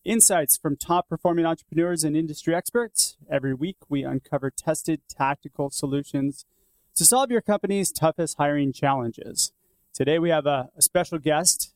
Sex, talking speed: male, 145 wpm